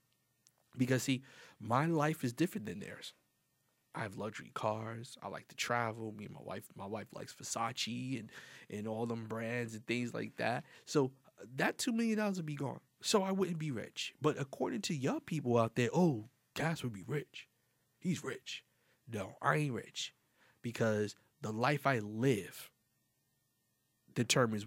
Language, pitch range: English, 115-145 Hz